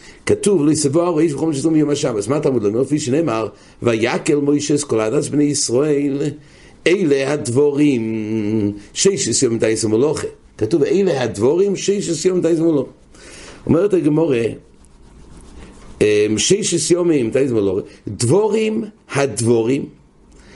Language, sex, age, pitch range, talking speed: English, male, 50-69, 110-160 Hz, 55 wpm